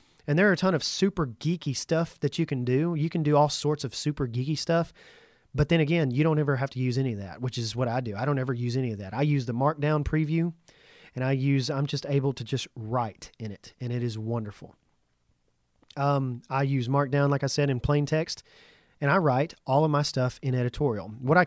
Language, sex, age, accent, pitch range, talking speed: English, male, 30-49, American, 125-150 Hz, 245 wpm